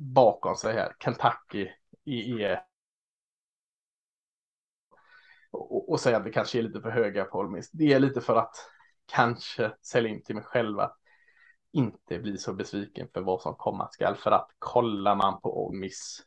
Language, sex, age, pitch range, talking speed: Swedish, male, 20-39, 115-140 Hz, 170 wpm